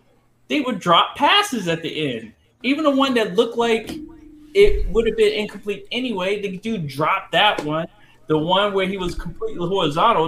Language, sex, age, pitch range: English, male, 20-39, 135-200 Hz